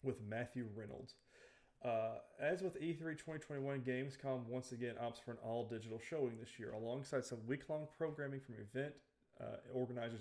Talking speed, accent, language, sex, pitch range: 155 wpm, American, English, male, 115-130 Hz